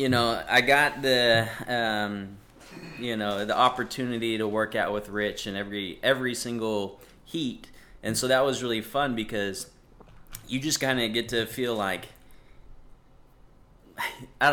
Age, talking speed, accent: 30-49, 145 wpm, American